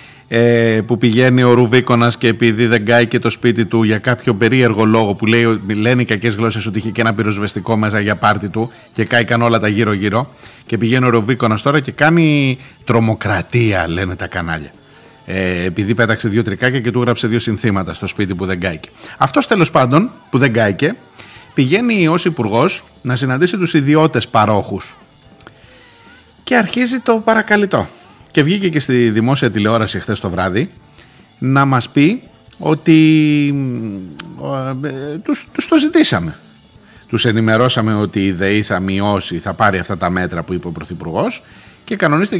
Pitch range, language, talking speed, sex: 105-150 Hz, Greek, 165 wpm, male